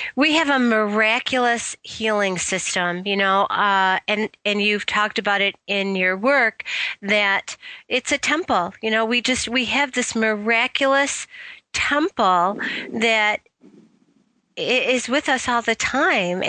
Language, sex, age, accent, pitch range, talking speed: English, female, 40-59, American, 205-255 Hz, 140 wpm